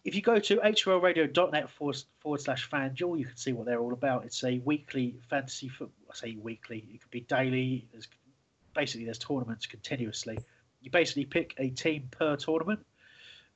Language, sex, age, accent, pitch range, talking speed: English, male, 30-49, British, 125-155 Hz, 175 wpm